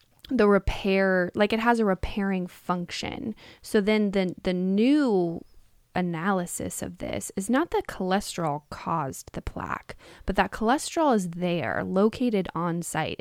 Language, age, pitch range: English, 10-29, 170-205 Hz